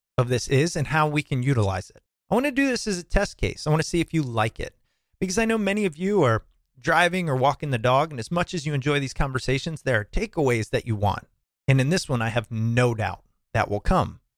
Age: 30-49